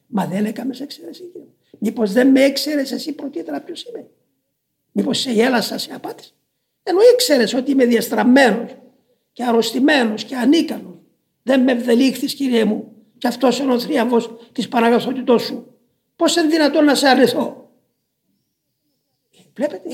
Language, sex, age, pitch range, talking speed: Greek, male, 50-69, 225-285 Hz, 145 wpm